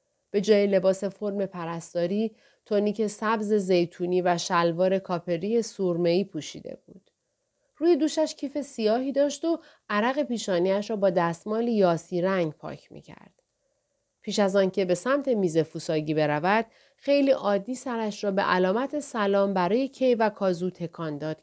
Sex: female